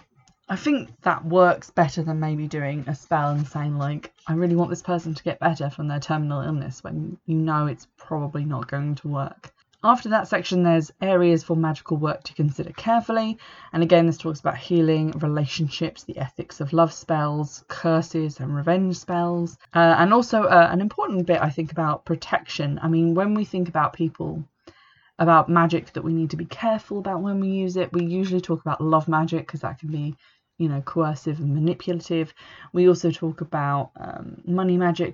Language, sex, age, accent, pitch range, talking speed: English, female, 20-39, British, 150-175 Hz, 195 wpm